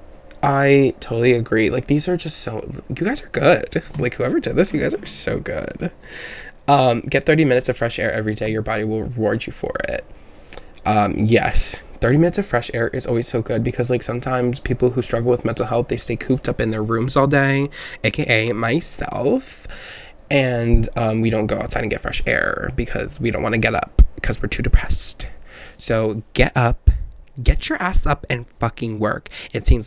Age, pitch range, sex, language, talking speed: 20-39, 110-130 Hz, male, English, 205 wpm